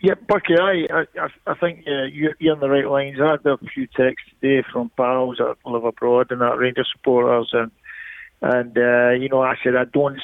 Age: 50-69